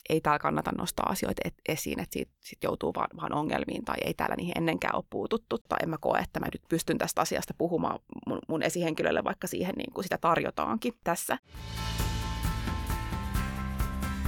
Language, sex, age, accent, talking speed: Finnish, female, 20-39, native, 170 wpm